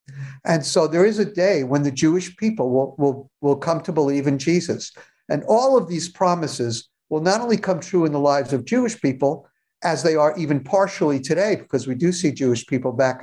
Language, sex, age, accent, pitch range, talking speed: English, male, 60-79, American, 145-185 Hz, 215 wpm